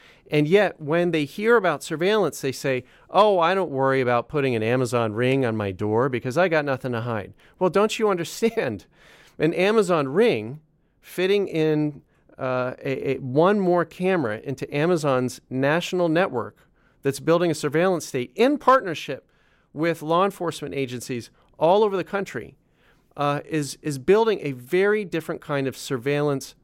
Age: 40-59